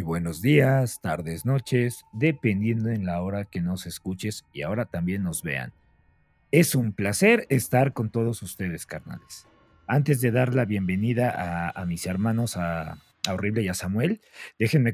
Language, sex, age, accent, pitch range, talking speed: Spanish, male, 40-59, Mexican, 100-130 Hz, 160 wpm